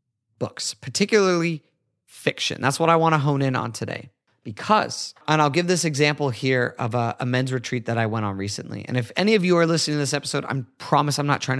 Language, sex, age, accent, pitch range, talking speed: English, male, 30-49, American, 125-160 Hz, 230 wpm